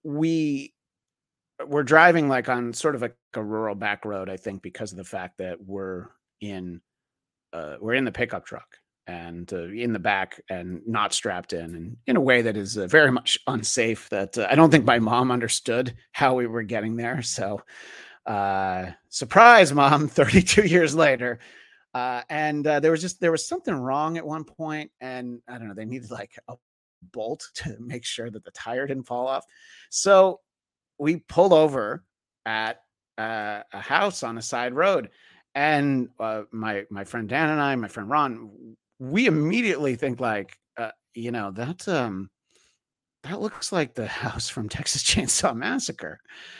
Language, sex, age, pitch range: English, male, 30-49, 110-150 Hz